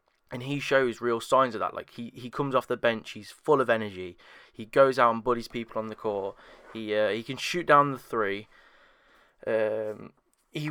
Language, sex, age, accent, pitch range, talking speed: English, male, 20-39, British, 105-130 Hz, 205 wpm